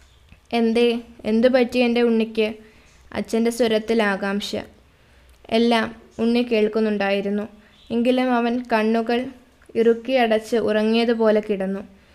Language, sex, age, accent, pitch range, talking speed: Malayalam, female, 20-39, native, 210-240 Hz, 90 wpm